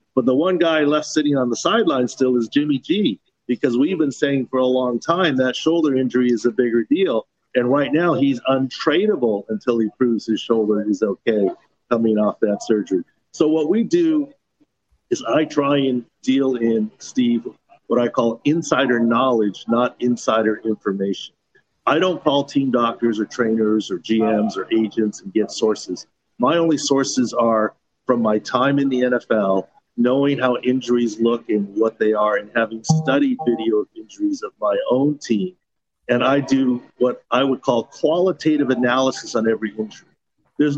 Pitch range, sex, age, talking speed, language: 115-145 Hz, male, 50-69, 175 wpm, English